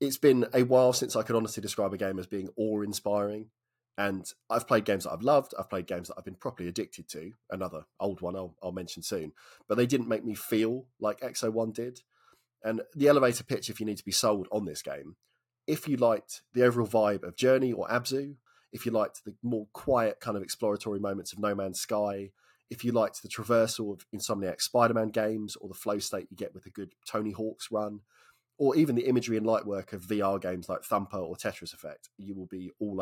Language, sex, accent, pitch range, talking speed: English, male, British, 100-120 Hz, 225 wpm